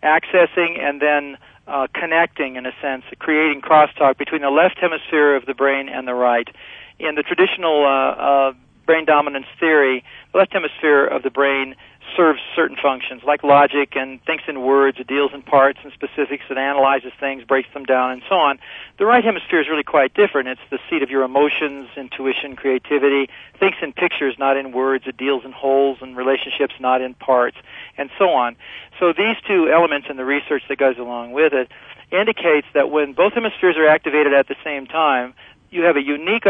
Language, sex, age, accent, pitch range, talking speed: English, male, 40-59, American, 135-155 Hz, 195 wpm